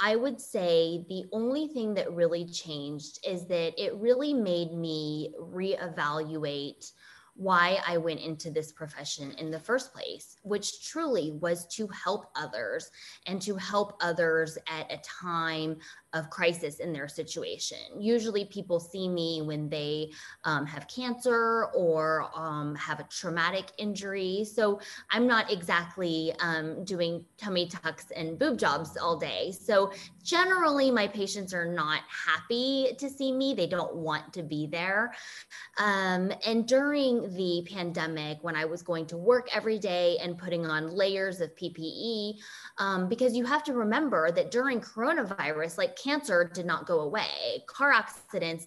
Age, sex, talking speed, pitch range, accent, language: 20-39, female, 155 wpm, 165-230 Hz, American, English